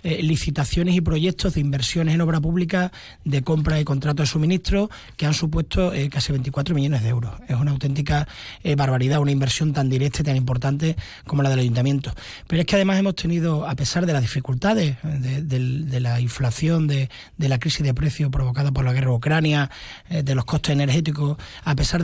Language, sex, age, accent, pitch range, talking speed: Spanish, male, 30-49, Spanish, 130-155 Hz, 200 wpm